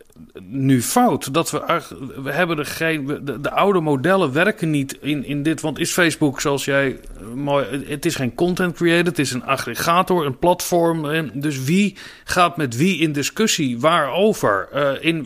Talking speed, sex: 160 wpm, male